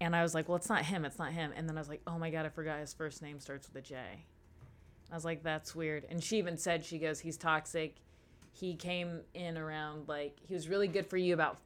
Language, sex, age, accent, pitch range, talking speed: English, female, 20-39, American, 140-175 Hz, 275 wpm